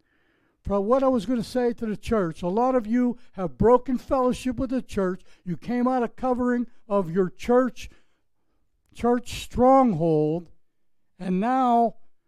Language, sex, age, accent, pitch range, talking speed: English, male, 60-79, American, 165-235 Hz, 150 wpm